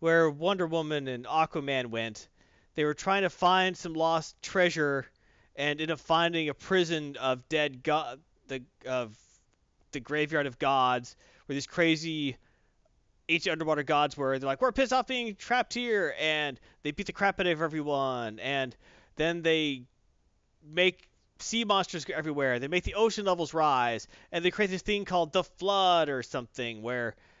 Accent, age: American, 30-49